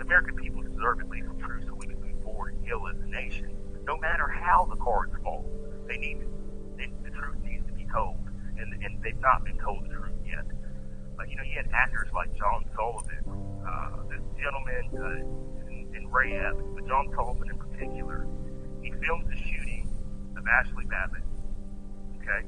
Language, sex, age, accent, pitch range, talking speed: English, male, 40-59, American, 75-100 Hz, 185 wpm